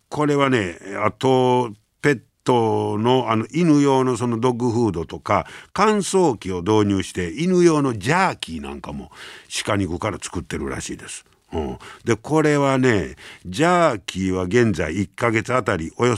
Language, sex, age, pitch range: Japanese, male, 60-79, 90-135 Hz